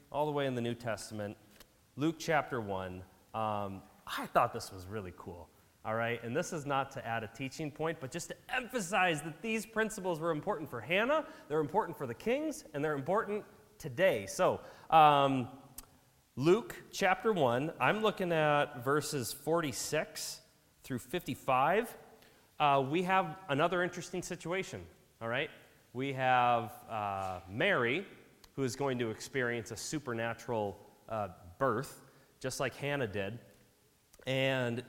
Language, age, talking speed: English, 30-49, 145 wpm